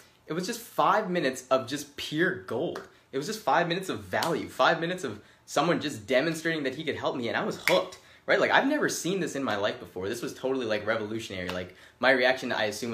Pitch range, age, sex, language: 110-165 Hz, 20-39, male, English